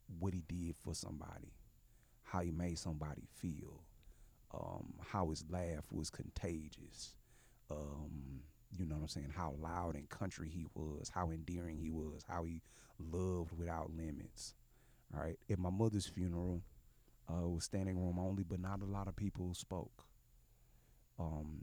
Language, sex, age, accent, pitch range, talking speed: English, male, 30-49, American, 85-115 Hz, 155 wpm